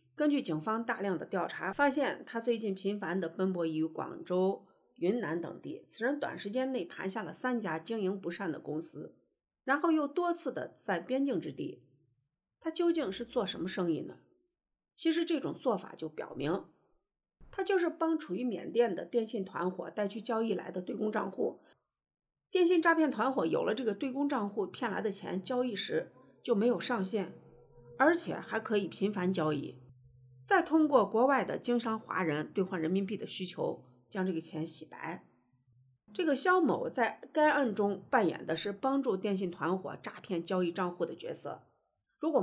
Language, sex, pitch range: Chinese, female, 175-260 Hz